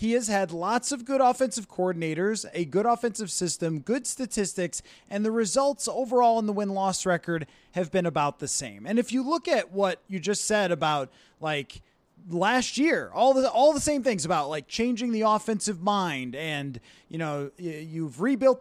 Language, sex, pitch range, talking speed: English, male, 175-240 Hz, 185 wpm